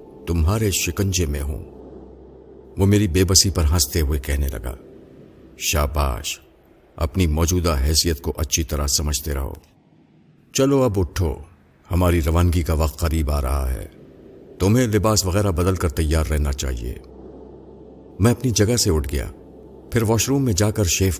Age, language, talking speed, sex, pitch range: 50-69, Urdu, 150 wpm, male, 70-95 Hz